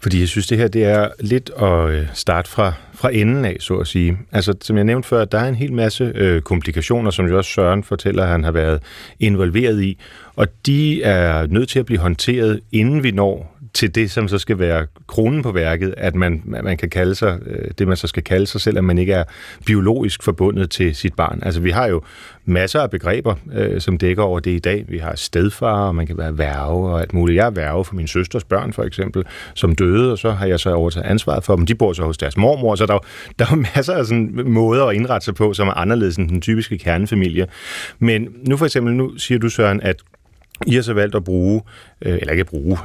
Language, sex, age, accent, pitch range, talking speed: Danish, male, 30-49, native, 90-115 Hz, 235 wpm